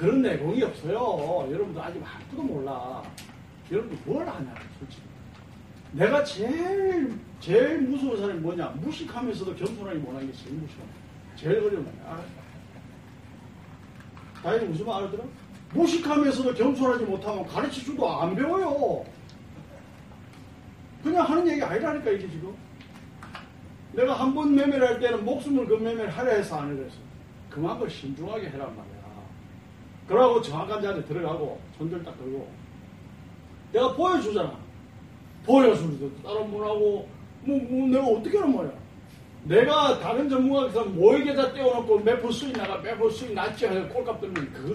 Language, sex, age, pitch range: Korean, male, 40-59, 175-280 Hz